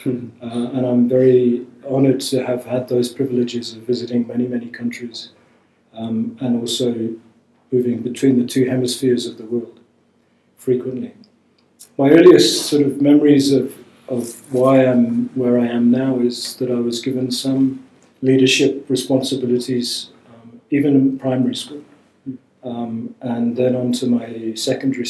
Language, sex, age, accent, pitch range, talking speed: English, male, 40-59, British, 120-130 Hz, 145 wpm